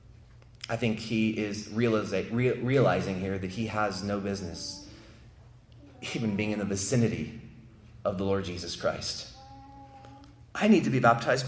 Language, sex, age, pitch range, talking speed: English, male, 30-49, 110-130 Hz, 135 wpm